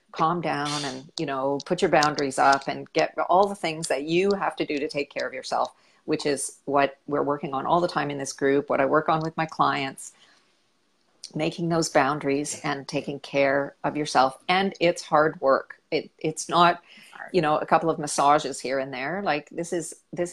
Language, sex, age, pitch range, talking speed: English, female, 40-59, 140-180 Hz, 205 wpm